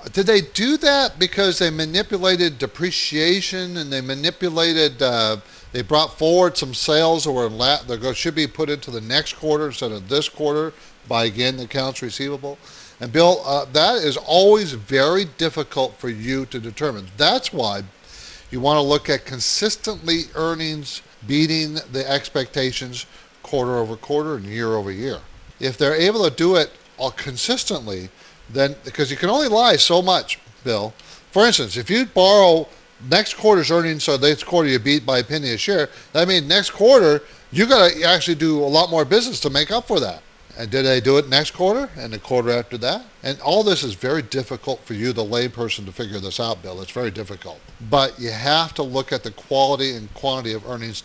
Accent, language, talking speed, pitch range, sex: American, English, 195 wpm, 125-170 Hz, male